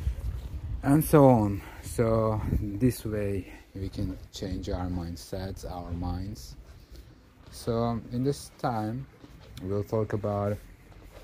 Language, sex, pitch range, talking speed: English, male, 90-115 Hz, 105 wpm